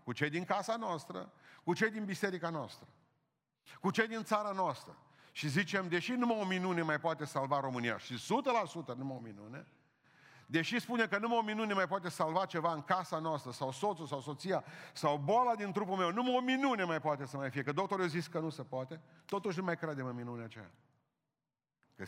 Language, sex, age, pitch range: Romanian, male, 50-69, 130-175 Hz